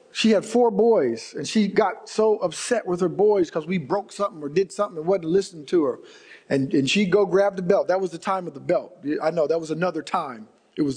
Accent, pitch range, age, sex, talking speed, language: American, 180-270 Hz, 50-69, male, 250 wpm, English